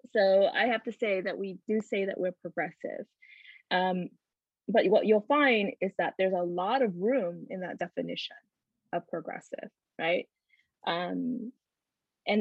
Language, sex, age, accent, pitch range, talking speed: English, female, 20-39, American, 180-230 Hz, 155 wpm